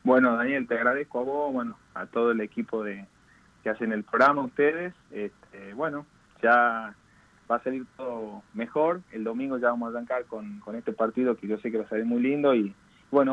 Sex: male